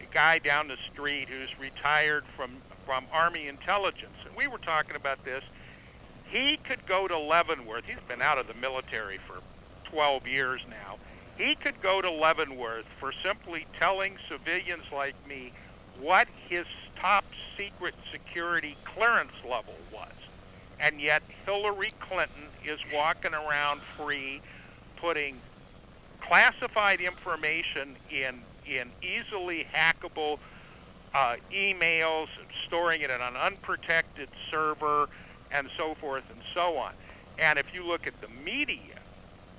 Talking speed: 130 wpm